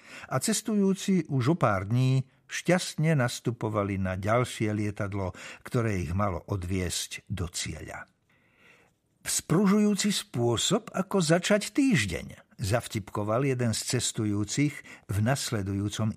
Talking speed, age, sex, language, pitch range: 105 wpm, 60-79, male, Slovak, 100-140 Hz